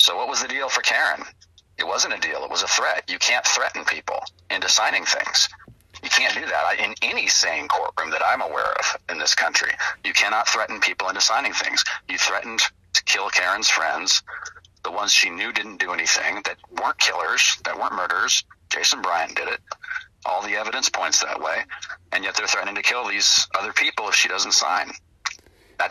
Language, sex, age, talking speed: English, male, 50-69, 200 wpm